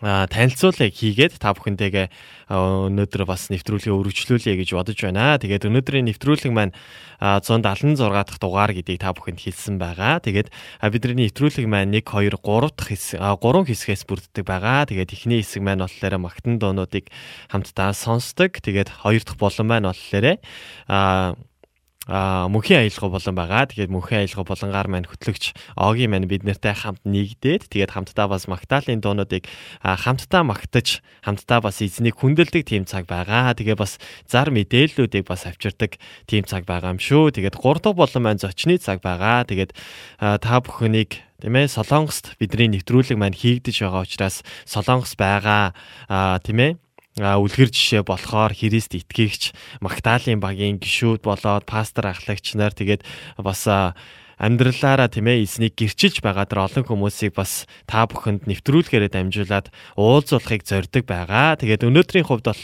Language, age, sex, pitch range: Korean, 20-39, male, 95-120 Hz